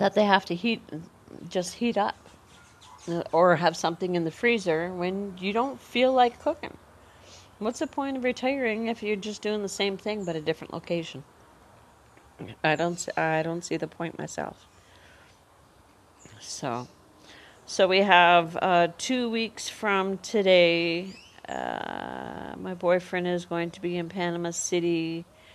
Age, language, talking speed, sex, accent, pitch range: 40-59, English, 150 wpm, female, American, 145-180 Hz